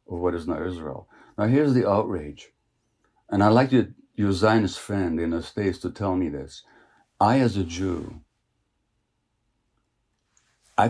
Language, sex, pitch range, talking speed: English, male, 95-115 Hz, 155 wpm